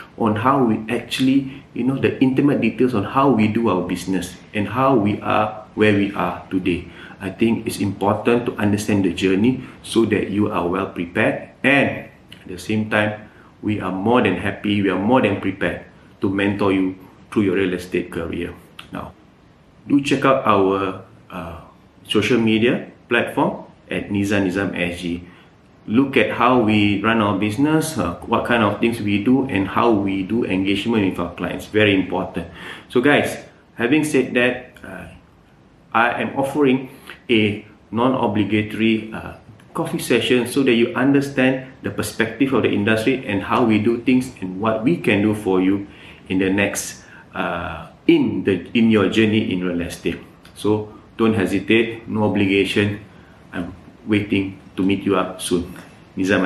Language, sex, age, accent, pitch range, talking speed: English, male, 30-49, Malaysian, 95-115 Hz, 165 wpm